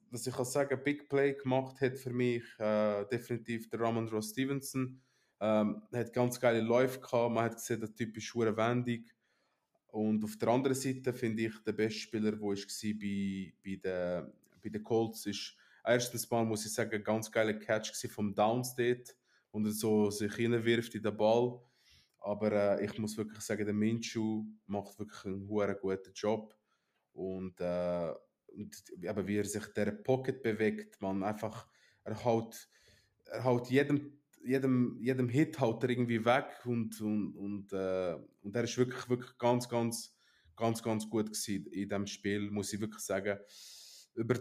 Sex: male